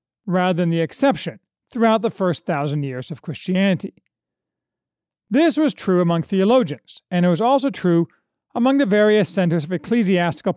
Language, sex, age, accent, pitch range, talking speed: English, male, 40-59, American, 165-230 Hz, 155 wpm